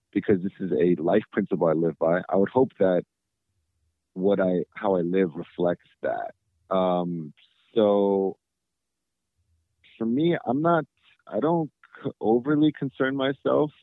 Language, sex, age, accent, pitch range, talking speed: English, male, 30-49, American, 90-100 Hz, 135 wpm